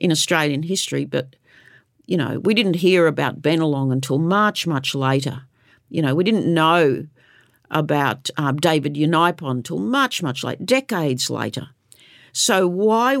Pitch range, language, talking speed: 140-185 Hz, English, 145 wpm